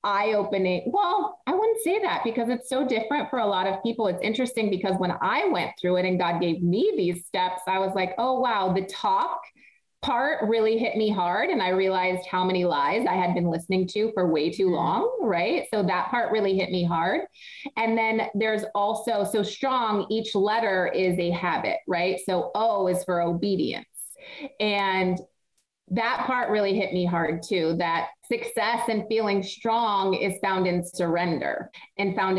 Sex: female